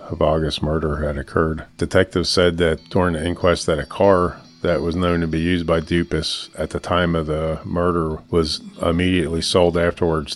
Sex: male